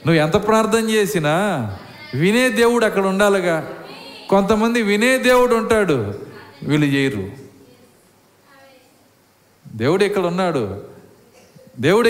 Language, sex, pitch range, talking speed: Telugu, male, 125-195 Hz, 90 wpm